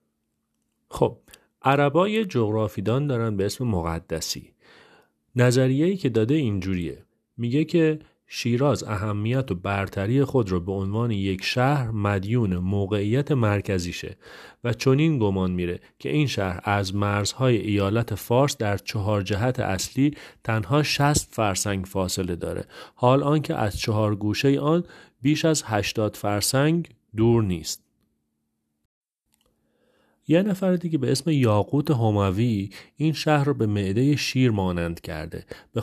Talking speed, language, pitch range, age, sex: 125 wpm, Persian, 95-135 Hz, 40-59, male